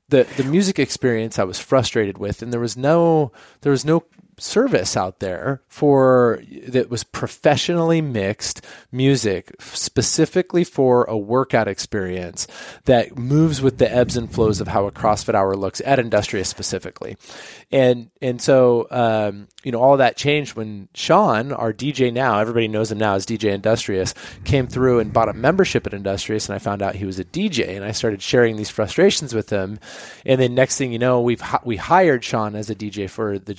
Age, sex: 20-39, male